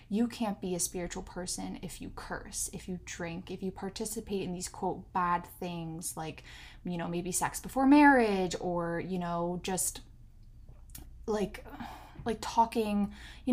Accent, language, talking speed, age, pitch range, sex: American, English, 155 wpm, 10-29, 180-230 Hz, female